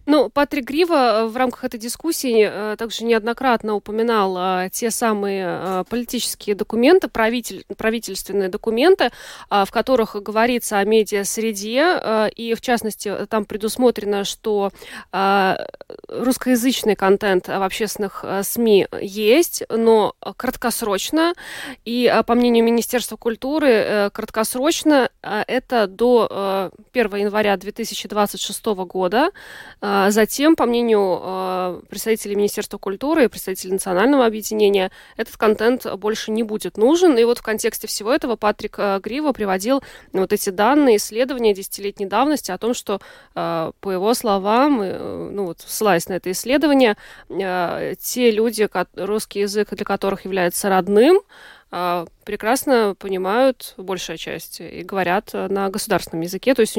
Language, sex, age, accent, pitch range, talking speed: Russian, female, 20-39, native, 200-240 Hz, 115 wpm